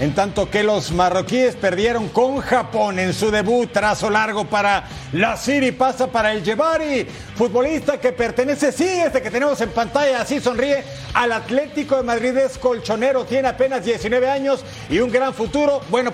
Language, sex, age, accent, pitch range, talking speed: Spanish, male, 50-69, Mexican, 225-270 Hz, 170 wpm